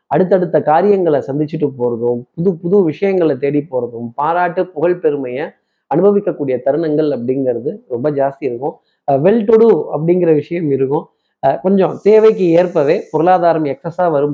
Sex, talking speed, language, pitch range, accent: male, 120 wpm, Tamil, 145-190 Hz, native